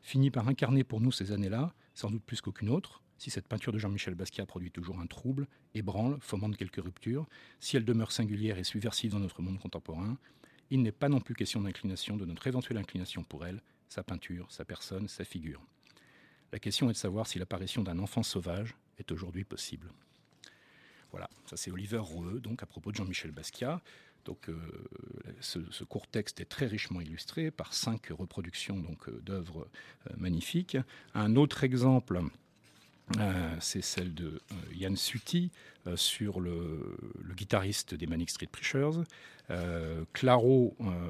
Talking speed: 170 wpm